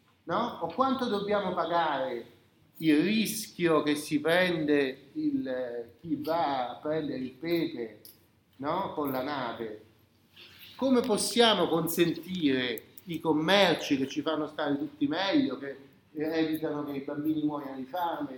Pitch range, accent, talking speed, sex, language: 145-220 Hz, native, 130 wpm, male, Italian